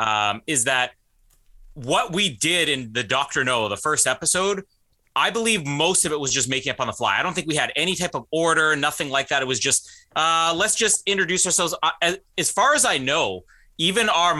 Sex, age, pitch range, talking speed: male, 30-49, 125-170 Hz, 215 wpm